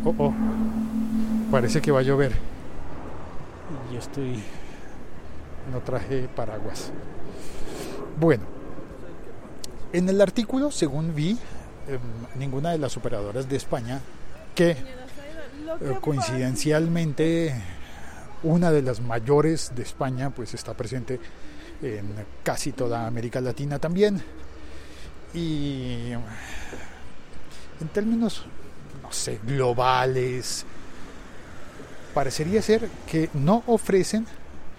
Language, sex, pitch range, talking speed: Spanish, male, 105-160 Hz, 90 wpm